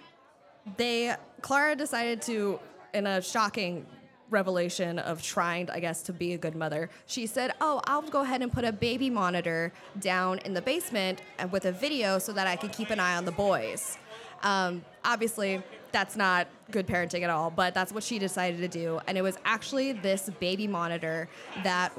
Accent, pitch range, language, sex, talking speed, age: American, 175-215 Hz, English, female, 185 wpm, 20-39